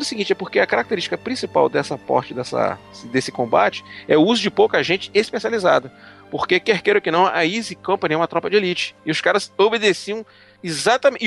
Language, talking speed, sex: Portuguese, 195 wpm, male